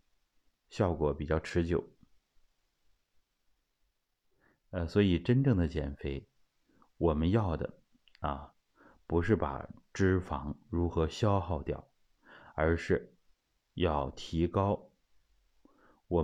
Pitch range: 75-95 Hz